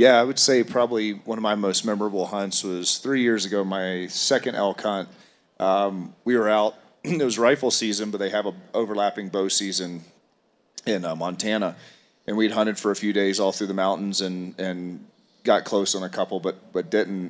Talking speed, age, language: 200 wpm, 30-49, English